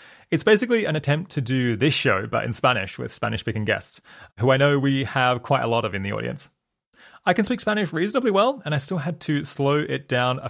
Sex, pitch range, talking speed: male, 115-160 Hz, 235 wpm